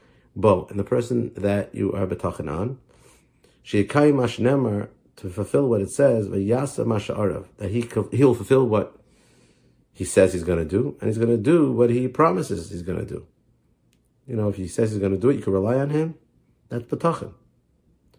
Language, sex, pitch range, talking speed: English, male, 100-130 Hz, 200 wpm